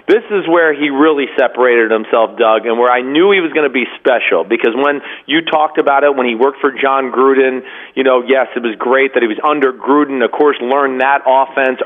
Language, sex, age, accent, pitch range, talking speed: English, male, 40-59, American, 130-160 Hz, 235 wpm